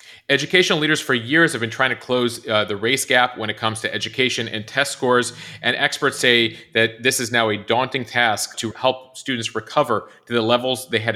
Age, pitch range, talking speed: 30-49, 105-125 Hz, 215 wpm